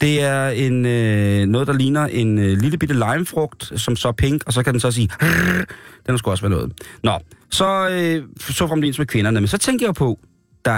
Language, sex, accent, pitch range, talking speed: Danish, male, native, 105-145 Hz, 230 wpm